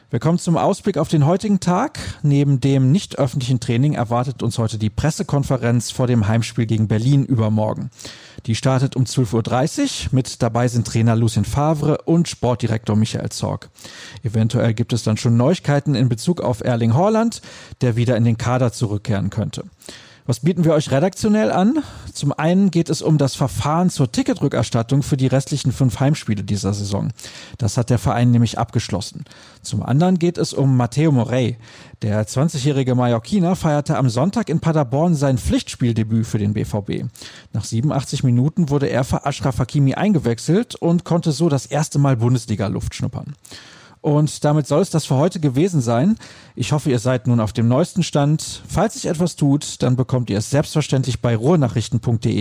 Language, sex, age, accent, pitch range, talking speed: German, male, 40-59, German, 115-150 Hz, 170 wpm